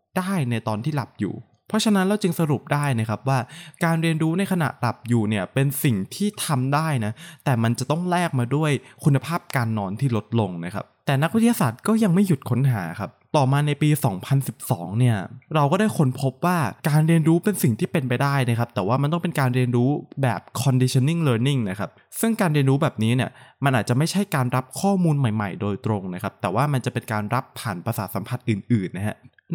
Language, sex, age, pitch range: Thai, male, 20-39, 115-160 Hz